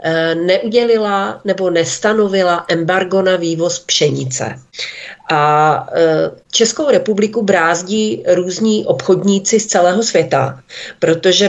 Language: Czech